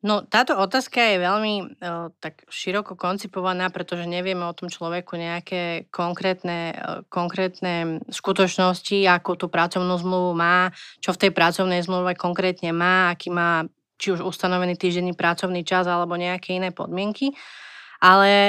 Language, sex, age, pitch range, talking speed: Slovak, female, 30-49, 175-200 Hz, 145 wpm